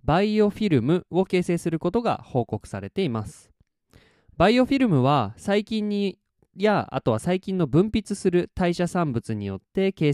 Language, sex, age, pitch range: Japanese, male, 20-39, 120-185 Hz